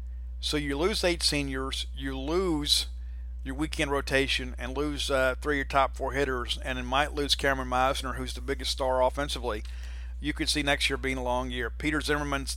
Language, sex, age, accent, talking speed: English, male, 50-69, American, 195 wpm